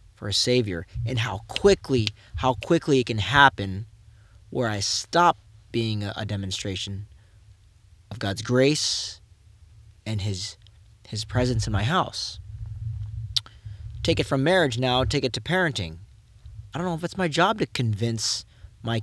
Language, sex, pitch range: English, male, 105-125 Hz